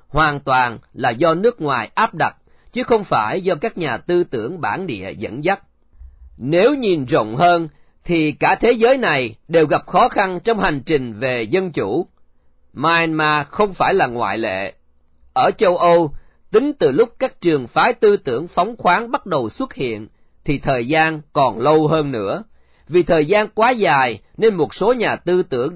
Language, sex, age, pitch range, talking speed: Vietnamese, male, 40-59, 145-205 Hz, 185 wpm